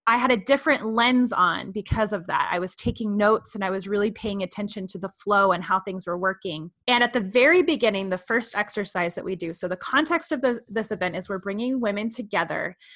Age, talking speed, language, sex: 20-39, 225 wpm, English, female